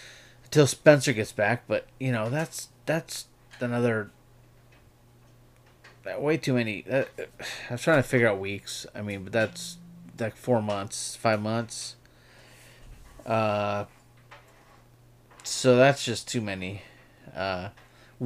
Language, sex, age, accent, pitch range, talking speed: English, male, 30-49, American, 105-130 Hz, 115 wpm